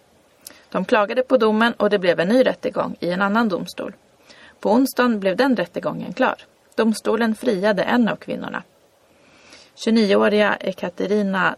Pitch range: 195-250 Hz